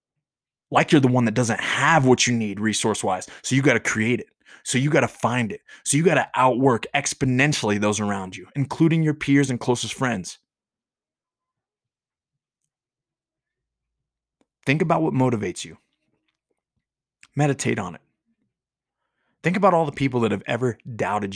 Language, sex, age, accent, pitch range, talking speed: English, male, 20-39, American, 105-140 Hz, 155 wpm